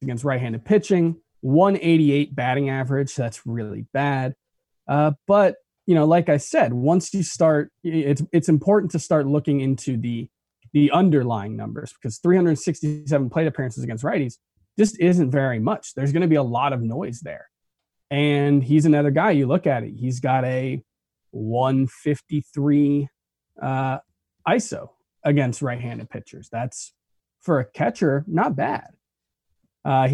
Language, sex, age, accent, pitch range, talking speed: English, male, 20-39, American, 125-165 Hz, 145 wpm